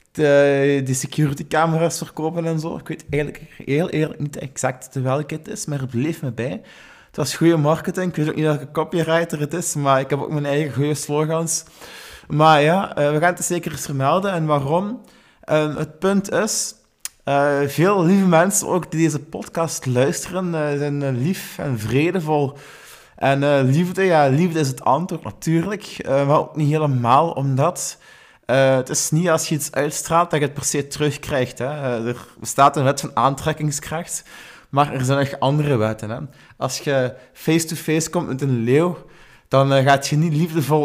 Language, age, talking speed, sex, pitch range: Dutch, 20-39, 180 wpm, male, 130-160 Hz